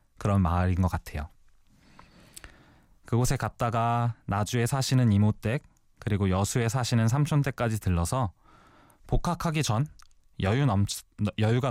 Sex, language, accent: male, Korean, native